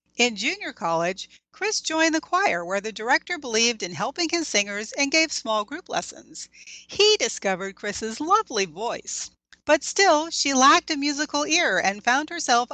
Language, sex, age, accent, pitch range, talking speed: English, female, 40-59, American, 210-325 Hz, 165 wpm